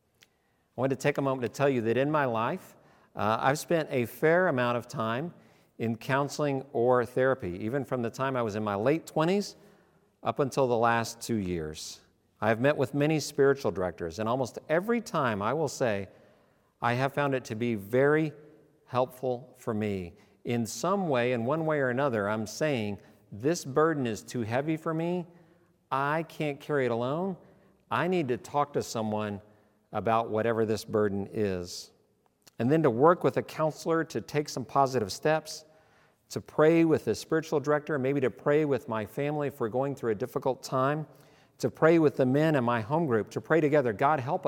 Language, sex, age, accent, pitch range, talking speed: English, male, 50-69, American, 115-155 Hz, 190 wpm